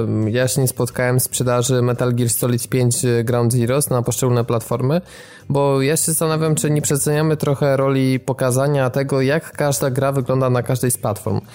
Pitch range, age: 120-140 Hz, 20-39